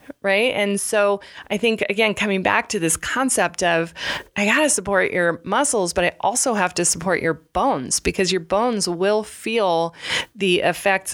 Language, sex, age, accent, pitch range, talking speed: English, female, 20-39, American, 165-210 Hz, 180 wpm